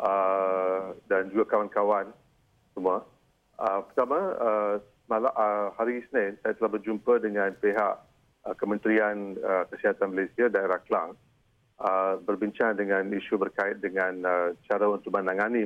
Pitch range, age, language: 95-115 Hz, 40-59, Malay